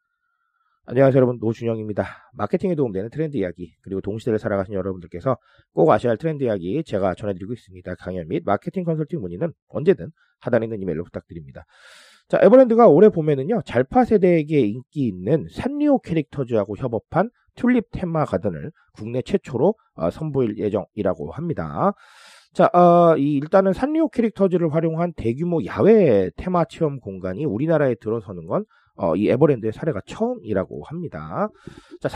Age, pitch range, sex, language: 30-49, 110-185 Hz, male, Korean